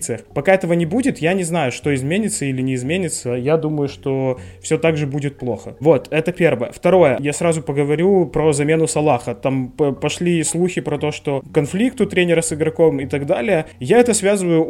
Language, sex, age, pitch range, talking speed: Ukrainian, male, 20-39, 150-185 Hz, 190 wpm